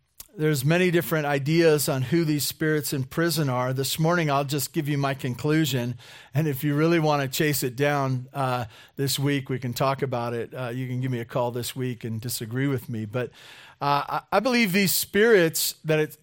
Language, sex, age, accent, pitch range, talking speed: English, male, 40-59, American, 130-160 Hz, 210 wpm